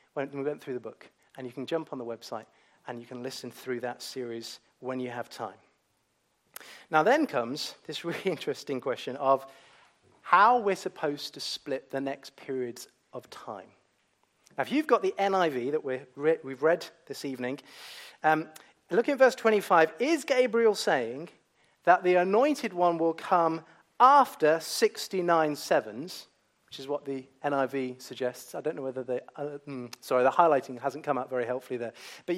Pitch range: 135-185 Hz